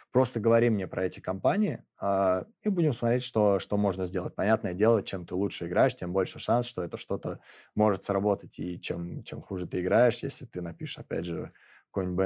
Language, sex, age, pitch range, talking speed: Russian, male, 20-39, 95-115 Hz, 190 wpm